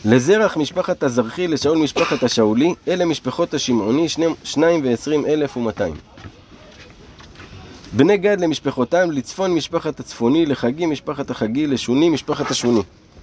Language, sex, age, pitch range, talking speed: Hebrew, male, 20-39, 125-175 Hz, 95 wpm